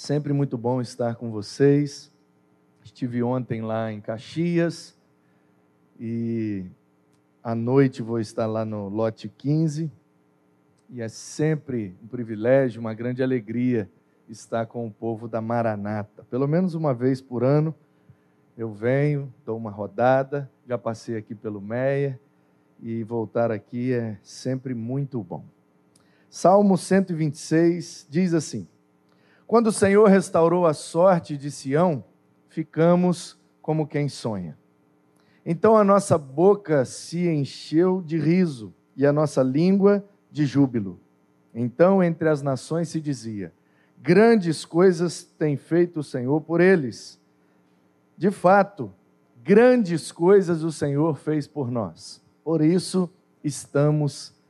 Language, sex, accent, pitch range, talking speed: Portuguese, male, Brazilian, 105-160 Hz, 125 wpm